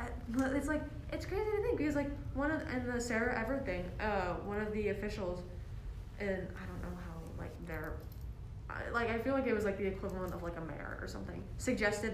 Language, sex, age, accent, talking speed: English, female, 20-39, American, 215 wpm